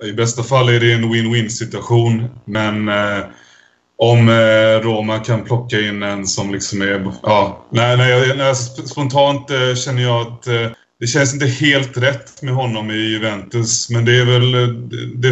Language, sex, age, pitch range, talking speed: Swedish, male, 20-39, 110-120 Hz, 190 wpm